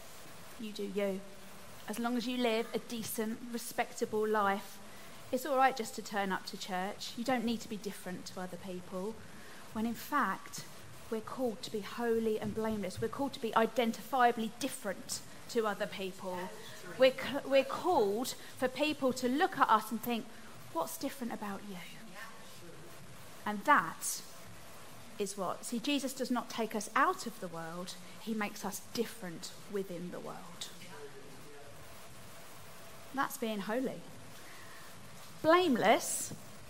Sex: female